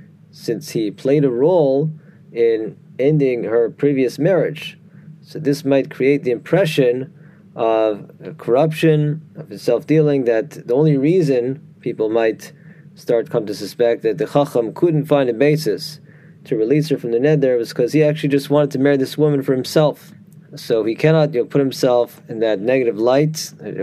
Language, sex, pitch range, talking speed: English, male, 125-160 Hz, 170 wpm